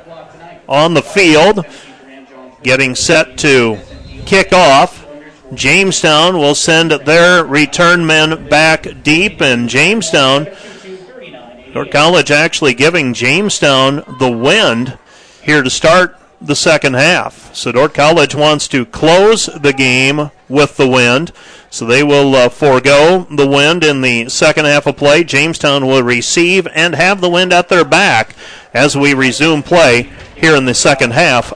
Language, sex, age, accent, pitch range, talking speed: English, male, 40-59, American, 135-170 Hz, 140 wpm